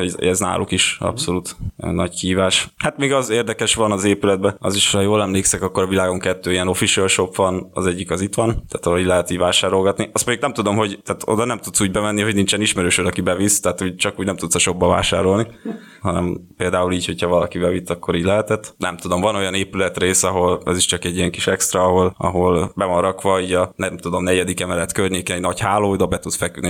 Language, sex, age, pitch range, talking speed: Hungarian, male, 20-39, 90-105 Hz, 225 wpm